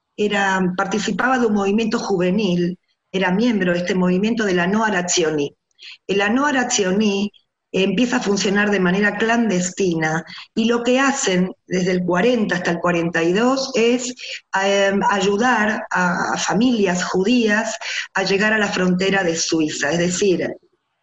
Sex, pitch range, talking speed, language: female, 175-225 Hz, 145 wpm, Spanish